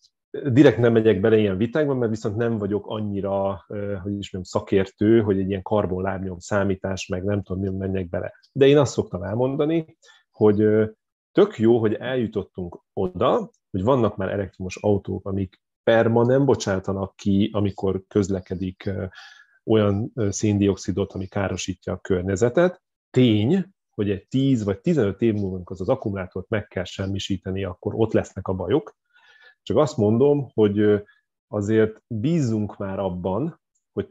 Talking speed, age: 145 wpm, 30-49